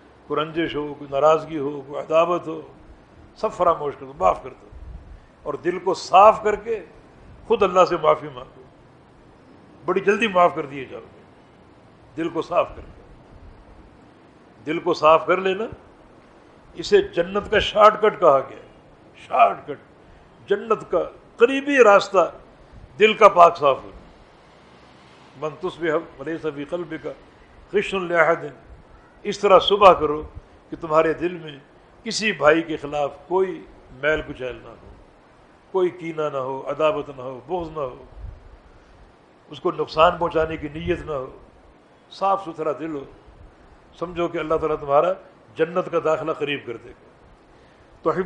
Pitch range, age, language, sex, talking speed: 150-195 Hz, 60-79, Urdu, male, 145 wpm